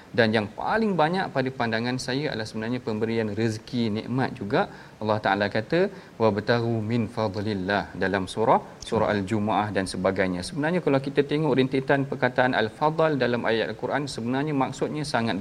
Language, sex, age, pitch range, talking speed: Malayalam, male, 40-59, 115-150 Hz, 150 wpm